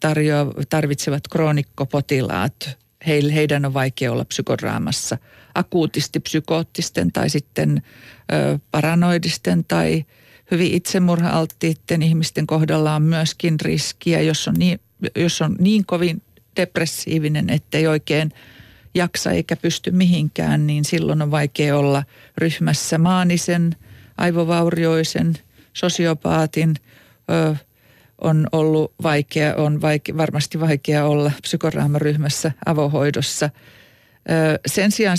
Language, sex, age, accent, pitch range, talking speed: Finnish, female, 50-69, native, 145-170 Hz, 95 wpm